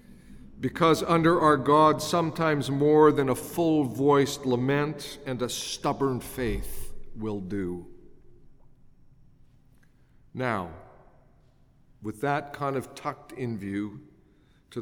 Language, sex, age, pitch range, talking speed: English, male, 50-69, 125-160 Hz, 100 wpm